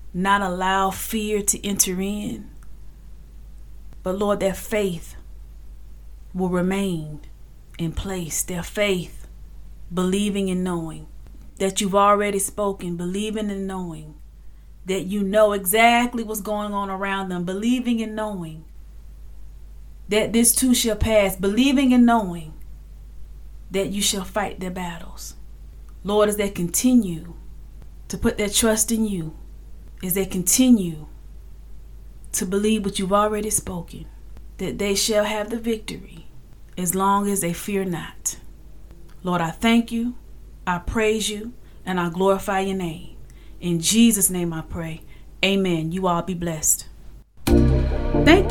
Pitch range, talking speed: 165-210 Hz, 130 wpm